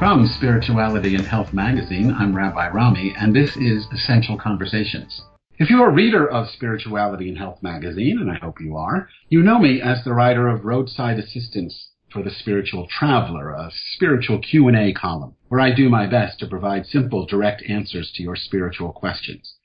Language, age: English, 50-69